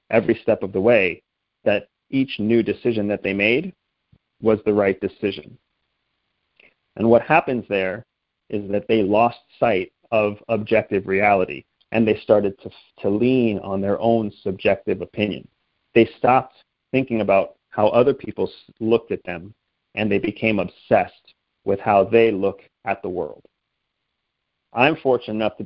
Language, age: English, 30-49